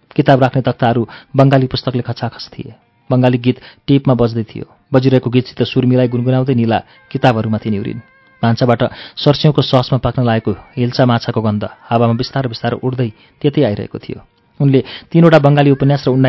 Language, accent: English, Indian